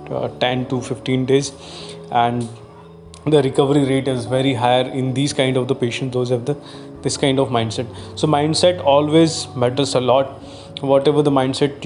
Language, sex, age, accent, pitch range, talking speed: Hindi, male, 20-39, native, 125-145 Hz, 170 wpm